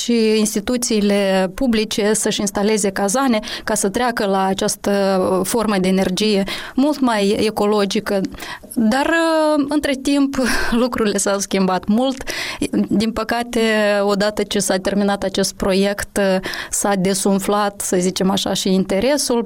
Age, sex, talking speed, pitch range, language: 20-39, female, 120 wpm, 200-245 Hz, Romanian